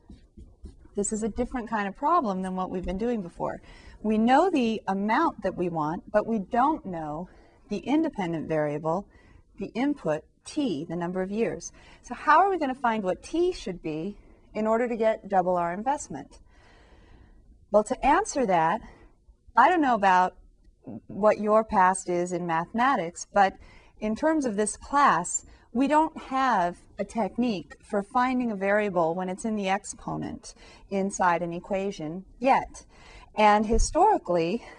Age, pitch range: 40-59, 175-230 Hz